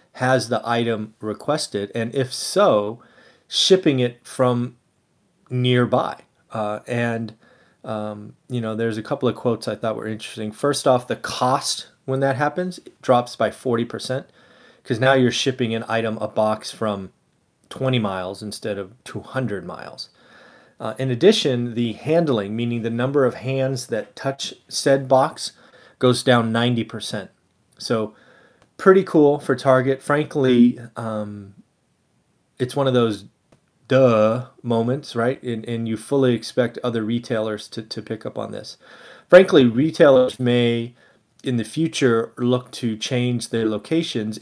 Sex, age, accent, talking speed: male, 30-49, American, 145 wpm